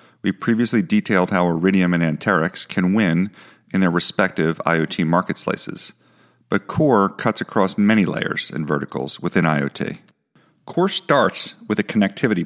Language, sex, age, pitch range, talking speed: English, male, 40-59, 95-135 Hz, 145 wpm